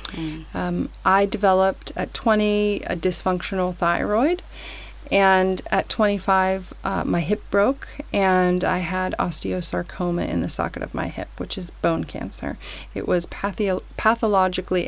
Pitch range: 175-205 Hz